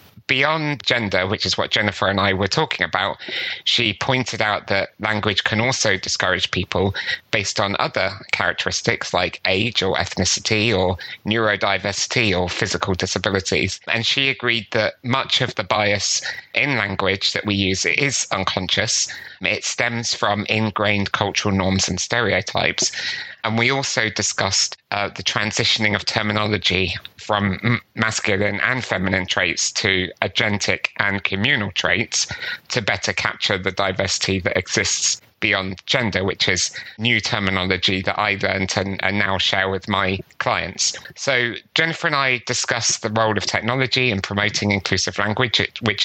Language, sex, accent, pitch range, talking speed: English, male, British, 95-115 Hz, 145 wpm